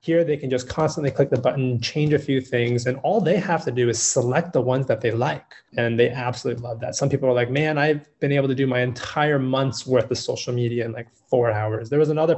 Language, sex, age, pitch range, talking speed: English, male, 20-39, 125-150 Hz, 260 wpm